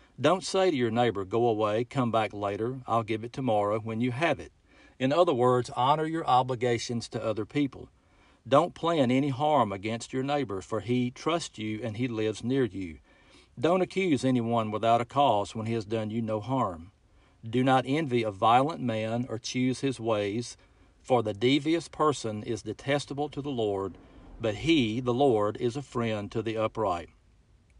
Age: 50-69